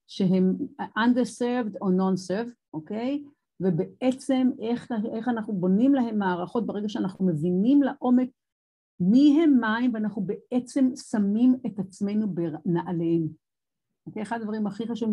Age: 50-69